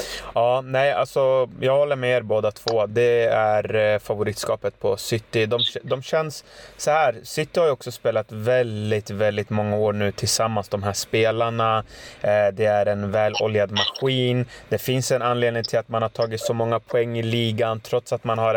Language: Swedish